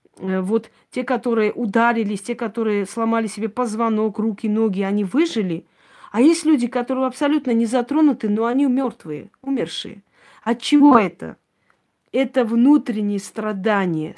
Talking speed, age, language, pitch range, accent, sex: 125 wpm, 40-59, Russian, 205-250 Hz, native, female